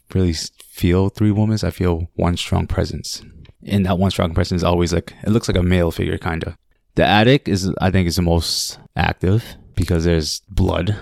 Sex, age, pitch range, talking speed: male, 20-39, 85-100 Hz, 200 wpm